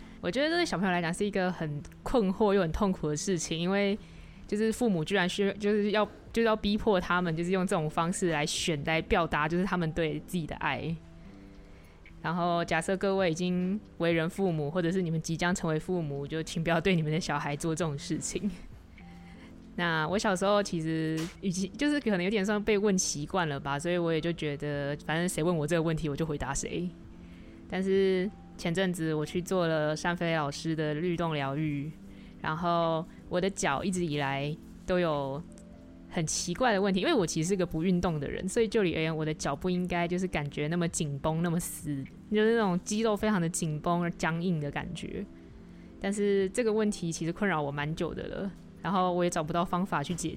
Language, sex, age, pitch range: Chinese, female, 20-39, 155-190 Hz